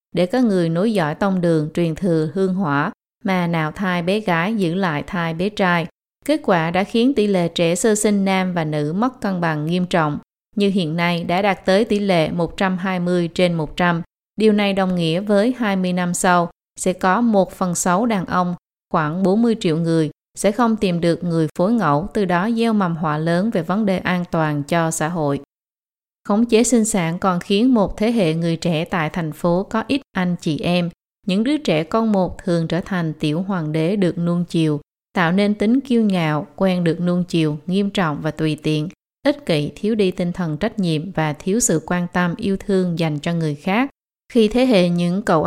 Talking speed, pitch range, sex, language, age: 210 wpm, 165-200 Hz, female, Vietnamese, 20-39